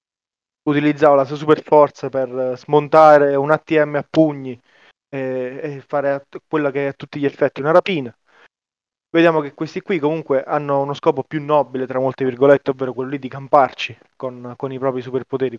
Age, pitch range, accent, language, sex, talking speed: 20-39, 130-155 Hz, native, Italian, male, 175 wpm